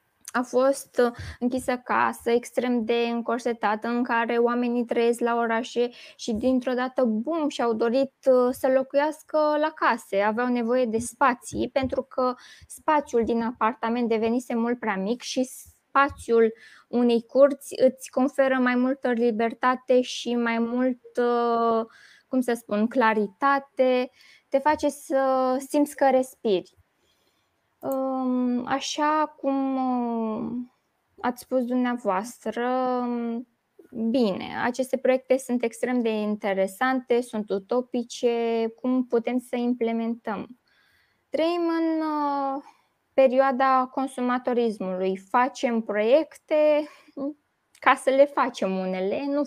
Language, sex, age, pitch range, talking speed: Romanian, female, 20-39, 235-265 Hz, 105 wpm